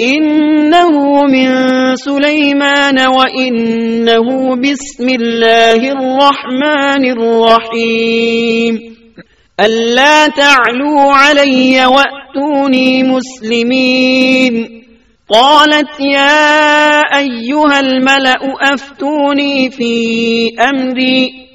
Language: Urdu